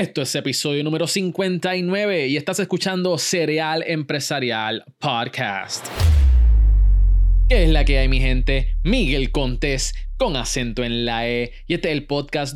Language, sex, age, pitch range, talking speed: Spanish, male, 20-39, 120-165 Hz, 145 wpm